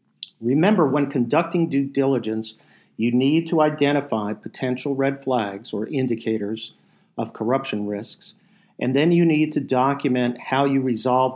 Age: 50-69